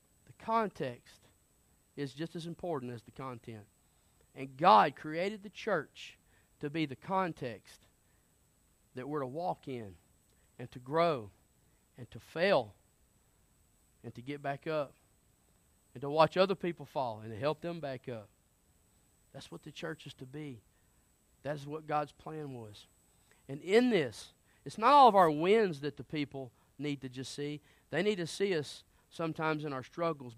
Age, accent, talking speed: 40-59, American, 160 wpm